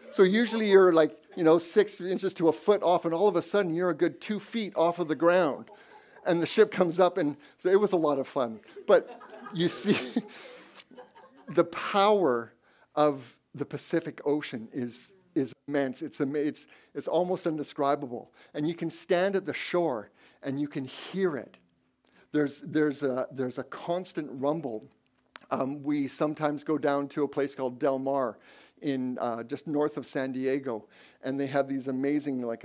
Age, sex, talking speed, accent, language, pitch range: 50-69, male, 185 wpm, American, English, 135-170 Hz